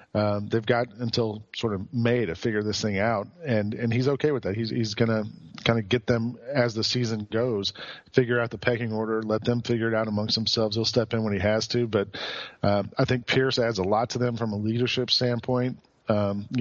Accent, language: American, English